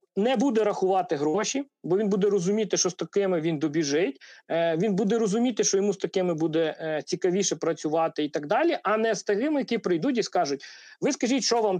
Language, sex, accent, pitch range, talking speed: Ukrainian, male, native, 185-245 Hz, 205 wpm